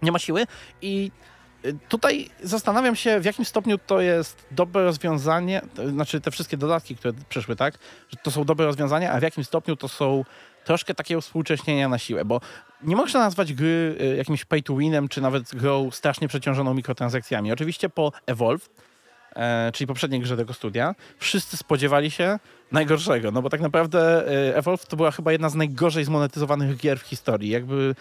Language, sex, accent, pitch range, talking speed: Polish, male, native, 135-165 Hz, 175 wpm